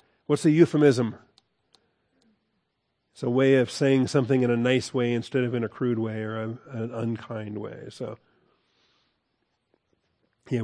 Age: 40-59